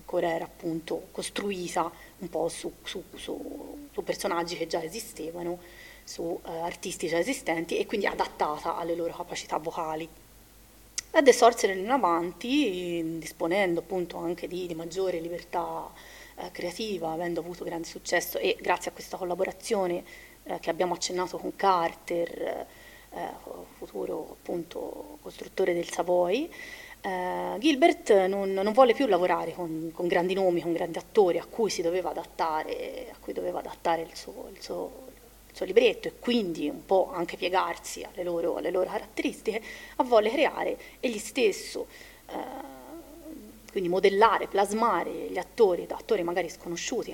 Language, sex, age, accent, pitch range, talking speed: Italian, female, 30-49, native, 170-230 Hz, 145 wpm